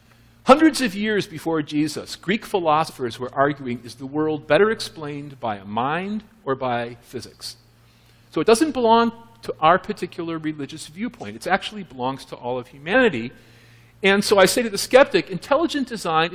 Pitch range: 120-195 Hz